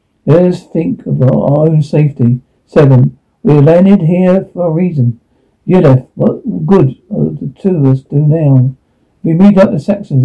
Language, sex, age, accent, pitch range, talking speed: English, male, 60-79, British, 135-175 Hz, 175 wpm